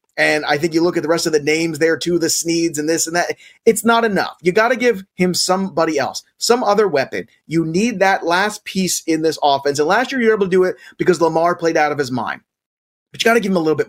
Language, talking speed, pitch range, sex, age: English, 280 wpm, 150-190 Hz, male, 30-49